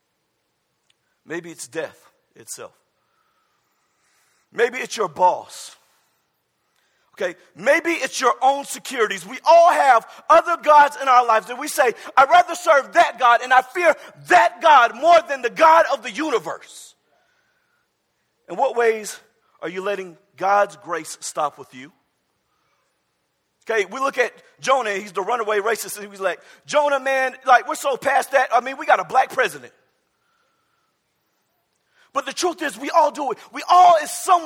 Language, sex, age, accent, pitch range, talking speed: English, male, 40-59, American, 240-330 Hz, 160 wpm